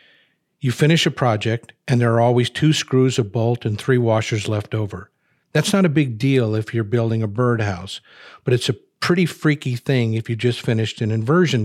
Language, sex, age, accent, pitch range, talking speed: English, male, 50-69, American, 110-140 Hz, 200 wpm